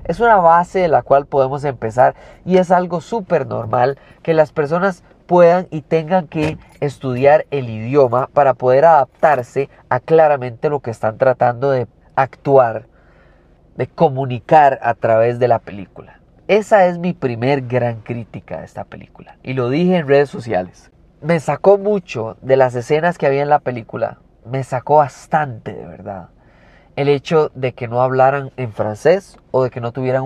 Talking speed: 170 wpm